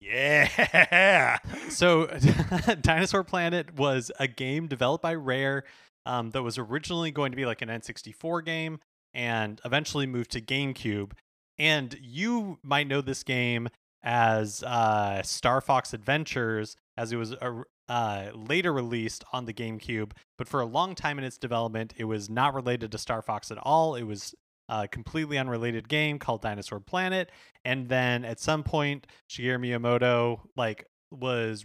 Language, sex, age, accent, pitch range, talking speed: English, male, 20-39, American, 115-150 Hz, 155 wpm